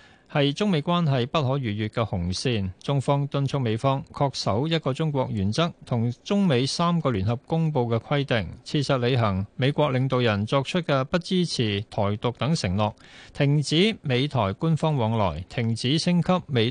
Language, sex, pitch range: Chinese, male, 115-150 Hz